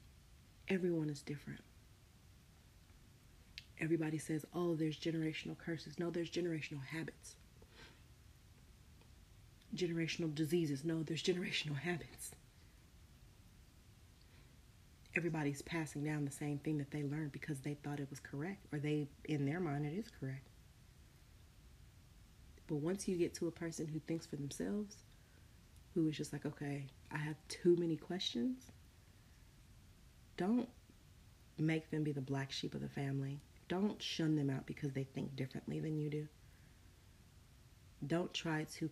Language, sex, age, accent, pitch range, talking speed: English, female, 30-49, American, 120-160 Hz, 135 wpm